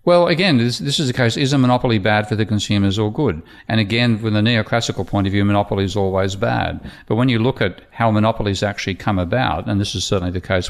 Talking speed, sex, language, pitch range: 245 wpm, male, English, 95-115 Hz